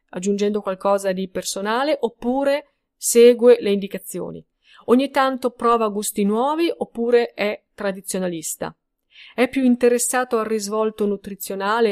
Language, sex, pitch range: Italian, female, 195-250 Hz